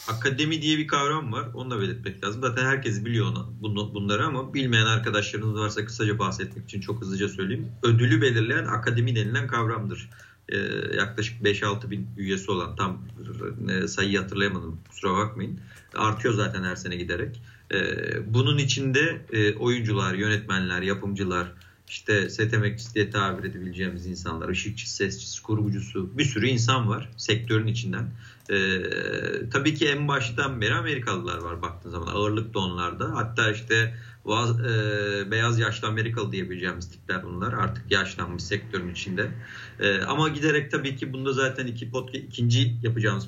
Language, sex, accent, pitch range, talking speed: Turkish, male, native, 100-120 Hz, 145 wpm